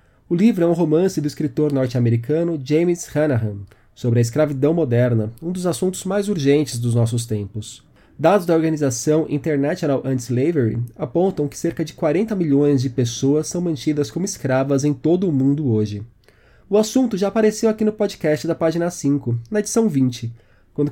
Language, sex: Portuguese, male